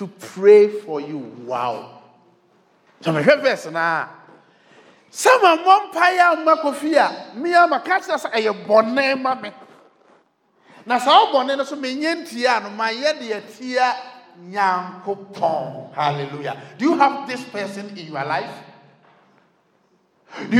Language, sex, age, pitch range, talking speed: English, male, 50-69, 165-260 Hz, 60 wpm